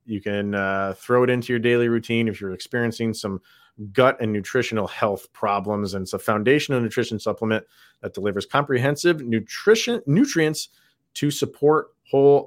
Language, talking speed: English, 150 wpm